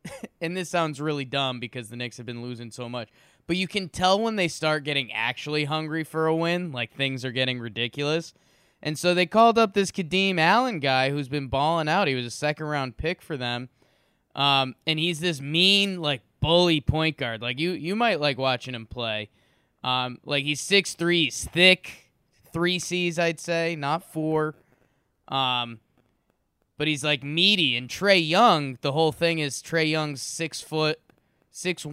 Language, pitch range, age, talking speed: English, 130-165 Hz, 20-39, 185 wpm